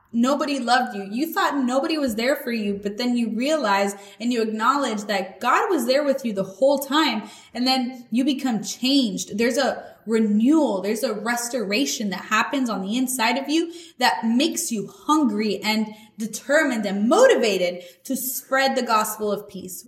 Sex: female